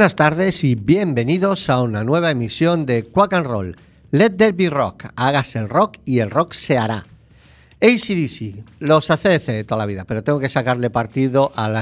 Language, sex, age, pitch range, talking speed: Spanish, male, 50-69, 110-155 Hz, 195 wpm